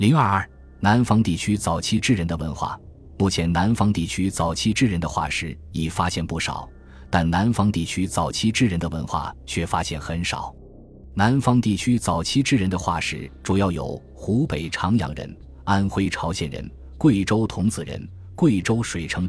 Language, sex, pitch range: Chinese, male, 80-110 Hz